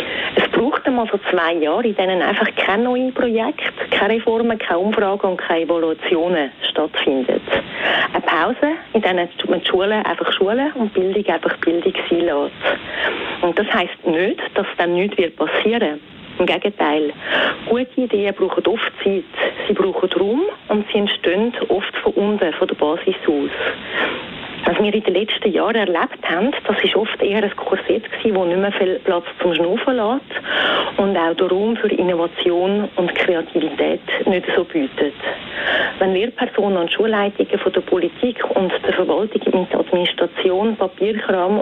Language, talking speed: German, 155 wpm